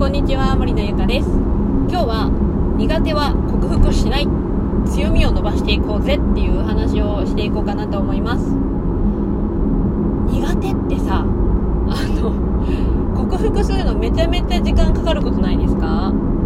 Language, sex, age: Japanese, female, 20-39